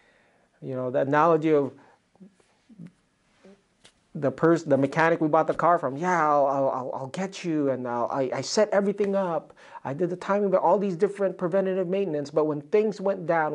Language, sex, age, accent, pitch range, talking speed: English, male, 40-59, American, 145-190 Hz, 185 wpm